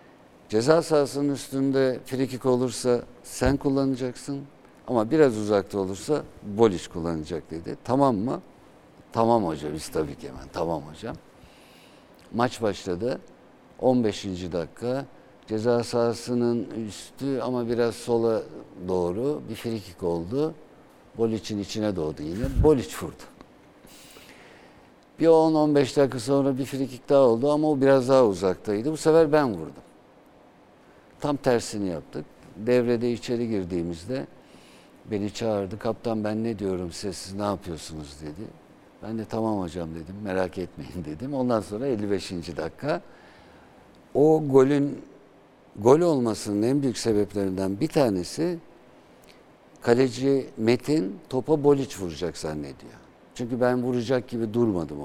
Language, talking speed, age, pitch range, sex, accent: Turkish, 120 wpm, 60-79, 95-135 Hz, male, native